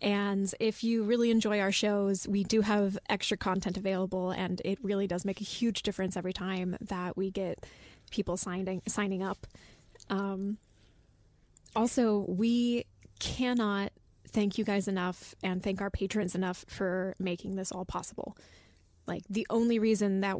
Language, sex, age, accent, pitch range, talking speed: English, female, 20-39, American, 195-210 Hz, 155 wpm